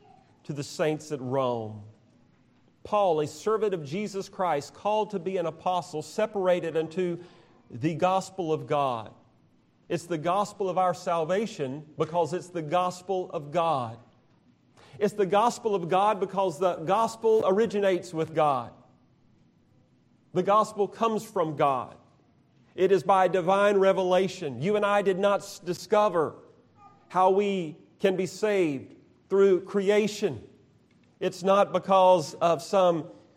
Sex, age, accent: male, 40-59, American